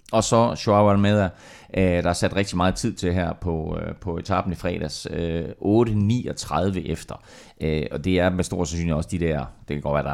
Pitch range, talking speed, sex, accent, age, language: 80-105 Hz, 190 wpm, male, native, 30-49, Danish